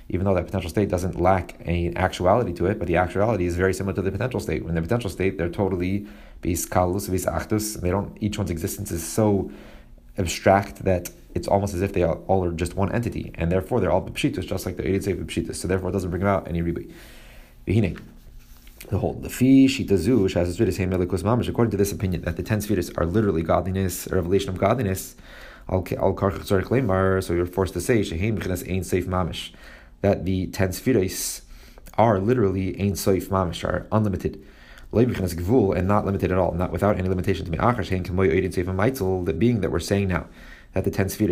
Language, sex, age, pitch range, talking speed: English, male, 30-49, 90-100 Hz, 190 wpm